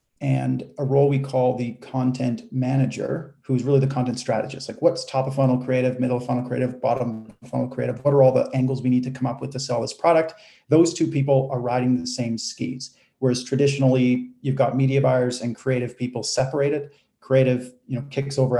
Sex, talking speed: male, 210 wpm